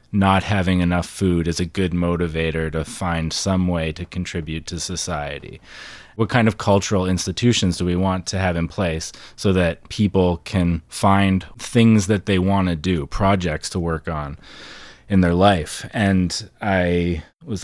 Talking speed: 165 wpm